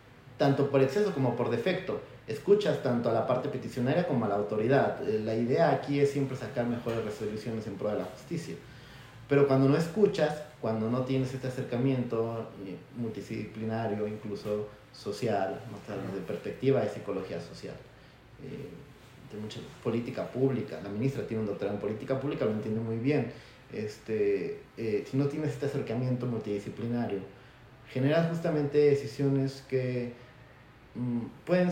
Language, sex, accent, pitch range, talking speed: Spanish, male, Mexican, 110-140 Hz, 145 wpm